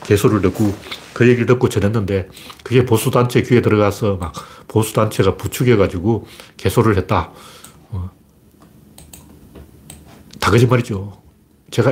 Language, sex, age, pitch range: Korean, male, 40-59, 95-145 Hz